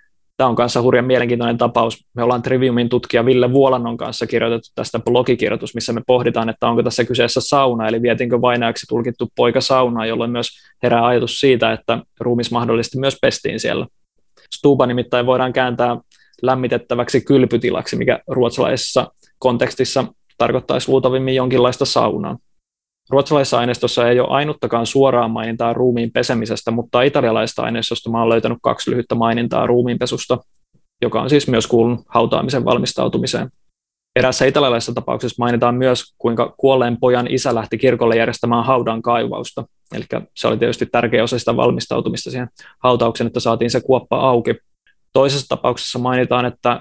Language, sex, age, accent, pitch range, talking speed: Finnish, male, 20-39, native, 115-130 Hz, 145 wpm